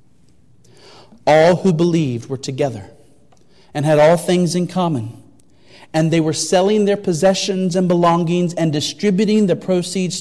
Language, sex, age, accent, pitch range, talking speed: English, male, 40-59, American, 170-230 Hz, 135 wpm